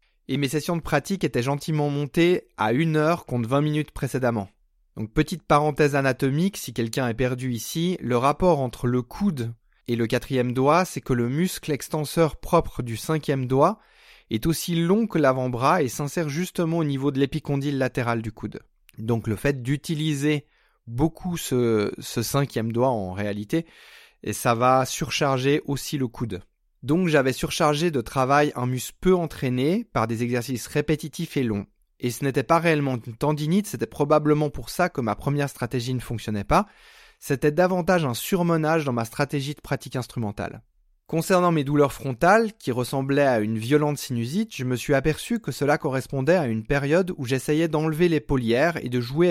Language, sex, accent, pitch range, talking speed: French, male, French, 125-160 Hz, 175 wpm